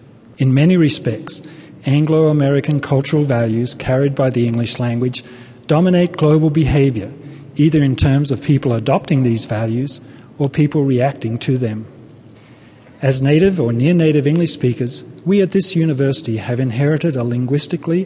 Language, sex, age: English, male, 40-59